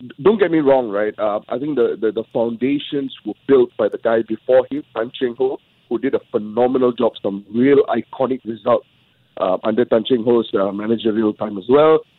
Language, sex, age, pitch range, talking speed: English, male, 50-69, 120-160 Hz, 200 wpm